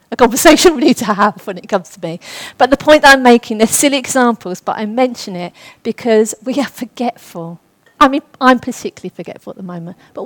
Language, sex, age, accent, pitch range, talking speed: English, female, 40-59, British, 195-255 Hz, 215 wpm